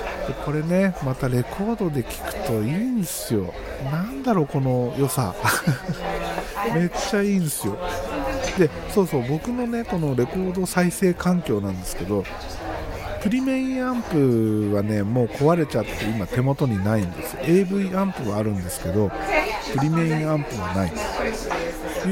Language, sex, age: Japanese, male, 50-69